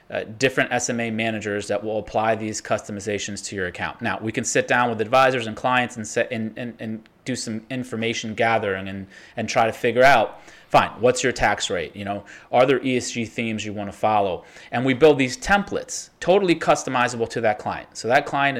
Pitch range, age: 105-130 Hz, 30-49